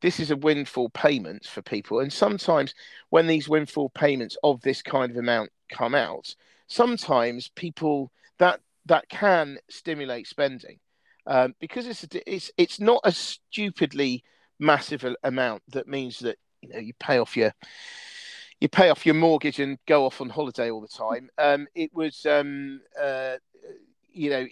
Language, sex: English, male